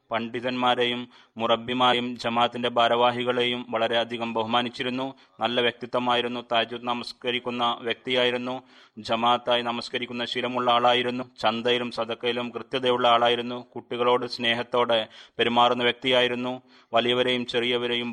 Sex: male